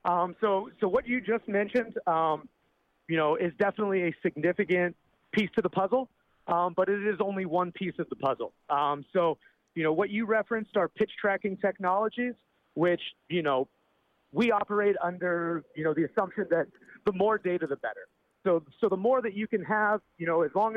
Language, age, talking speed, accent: English, 30-49, 195 wpm, American